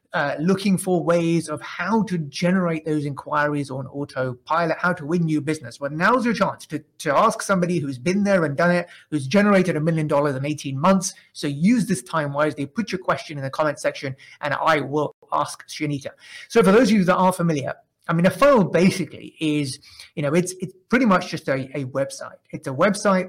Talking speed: 215 wpm